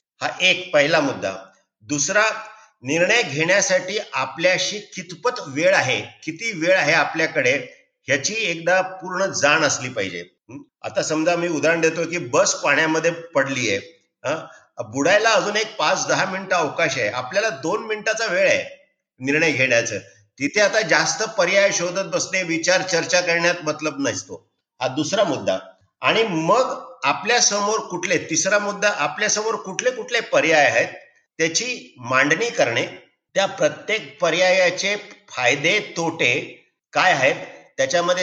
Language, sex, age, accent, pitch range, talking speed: Marathi, male, 50-69, native, 160-220 Hz, 110 wpm